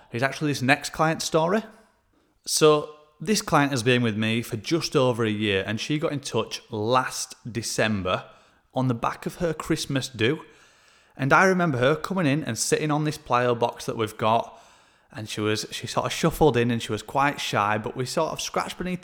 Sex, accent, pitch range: male, British, 115-160 Hz